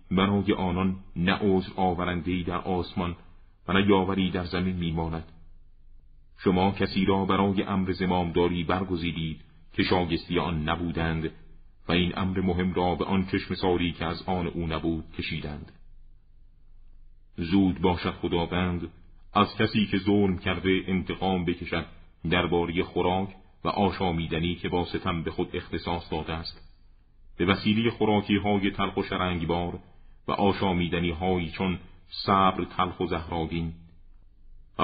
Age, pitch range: 40-59, 85-95 Hz